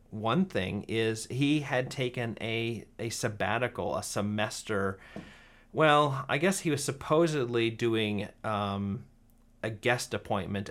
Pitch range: 105-130 Hz